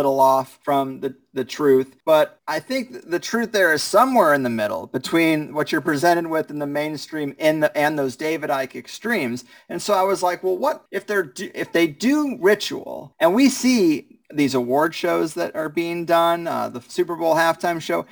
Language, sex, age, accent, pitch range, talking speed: English, male, 30-49, American, 145-205 Hz, 205 wpm